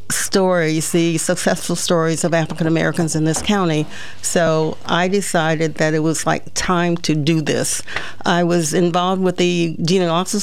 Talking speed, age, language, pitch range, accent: 155 wpm, 50-69, English, 165-190 Hz, American